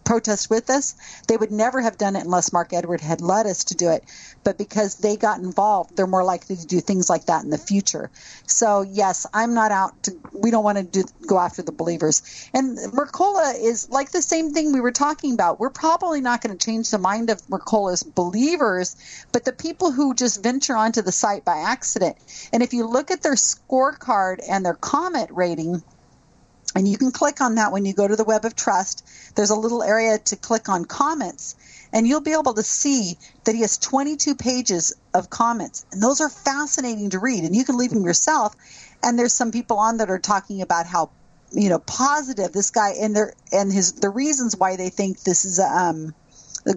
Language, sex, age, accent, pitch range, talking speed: English, female, 40-59, American, 190-255 Hz, 215 wpm